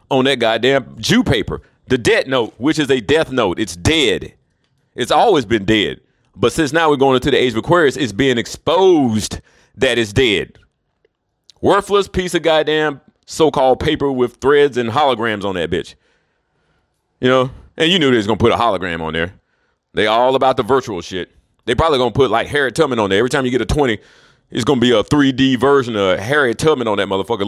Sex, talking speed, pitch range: male, 210 wpm, 120-160 Hz